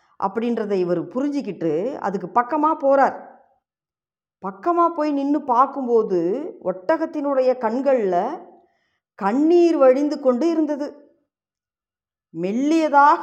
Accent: native